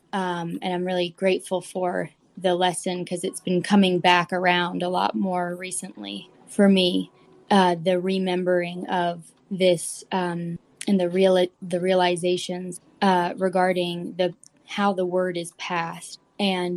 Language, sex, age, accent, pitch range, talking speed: English, female, 20-39, American, 170-190 Hz, 145 wpm